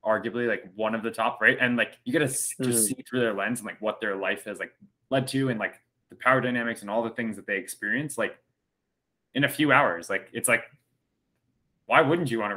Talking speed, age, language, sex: 240 wpm, 20-39, English, male